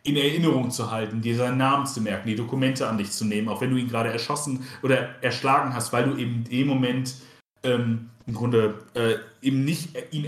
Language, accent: German, German